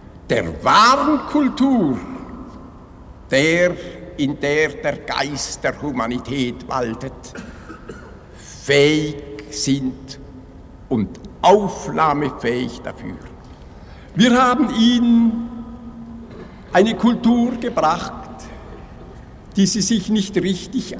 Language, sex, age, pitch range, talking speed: German, male, 60-79, 150-245 Hz, 75 wpm